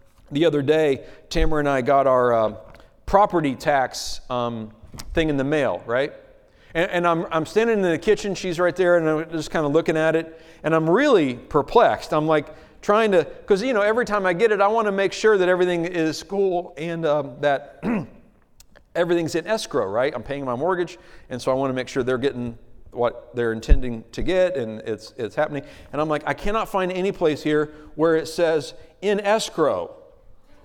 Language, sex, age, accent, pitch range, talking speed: English, male, 40-59, American, 155-205 Hz, 205 wpm